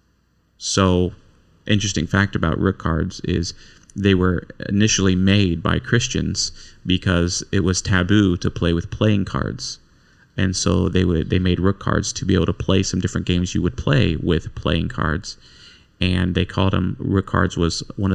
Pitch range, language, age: 95-110 Hz, English, 30-49